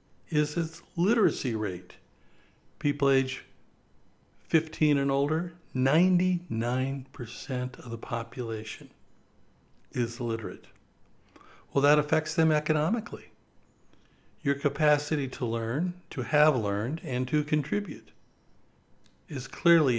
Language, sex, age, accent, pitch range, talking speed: English, male, 60-79, American, 120-155 Hz, 95 wpm